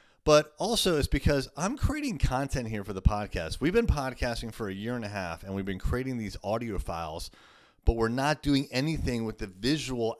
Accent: American